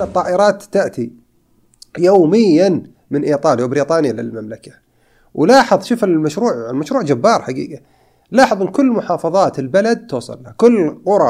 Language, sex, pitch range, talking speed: Arabic, male, 110-160 Hz, 110 wpm